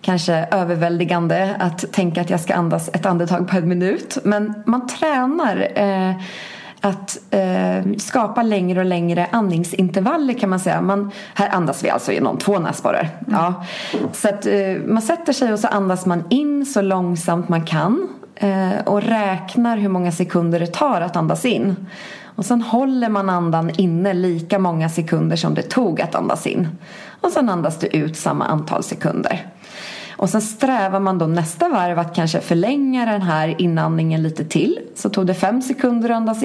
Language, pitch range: English, 175-210 Hz